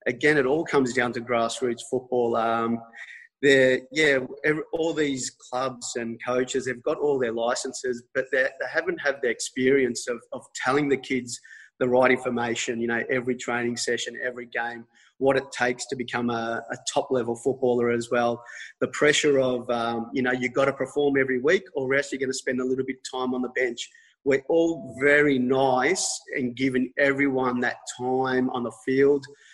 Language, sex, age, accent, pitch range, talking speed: English, male, 30-49, Australian, 120-140 Hz, 185 wpm